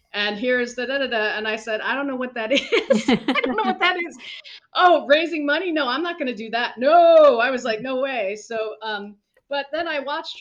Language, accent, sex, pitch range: English, American, female, 200-275 Hz